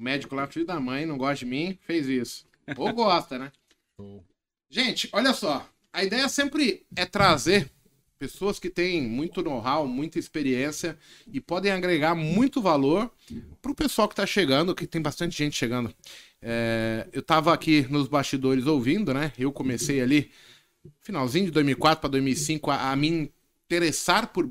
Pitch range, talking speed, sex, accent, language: 130-185 Hz, 160 wpm, male, Brazilian, Portuguese